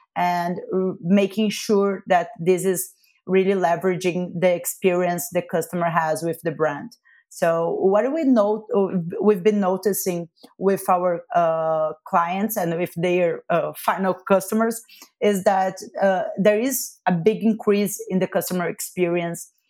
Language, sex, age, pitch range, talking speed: English, female, 30-49, 180-215 Hz, 140 wpm